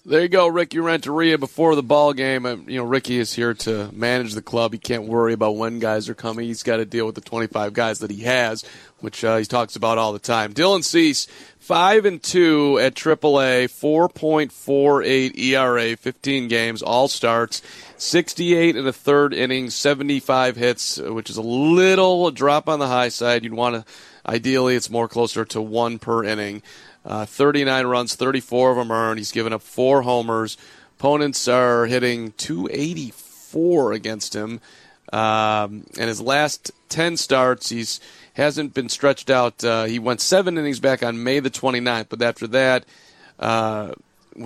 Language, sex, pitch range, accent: English, male, 115-140 Hz, American